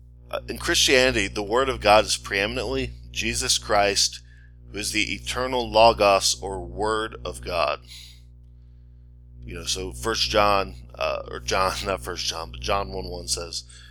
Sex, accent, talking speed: male, American, 150 wpm